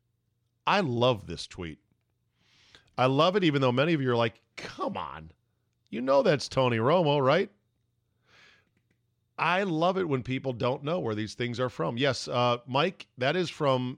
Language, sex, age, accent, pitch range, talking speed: English, male, 40-59, American, 110-135 Hz, 170 wpm